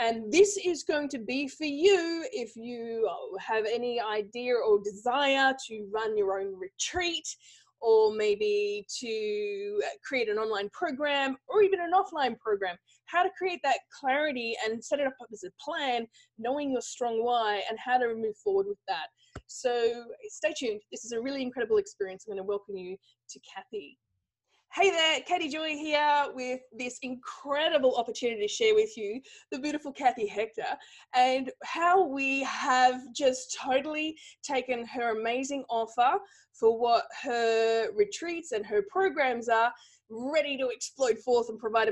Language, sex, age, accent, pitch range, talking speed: English, female, 20-39, Australian, 230-360 Hz, 160 wpm